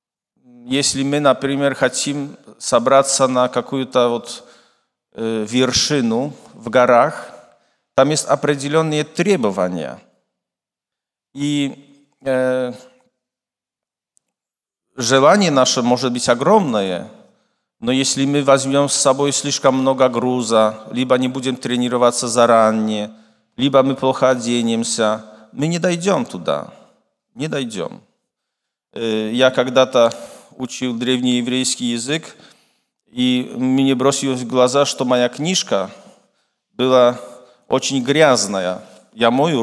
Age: 40-59